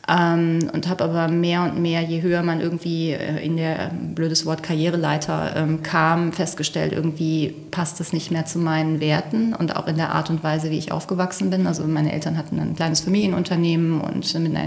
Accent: German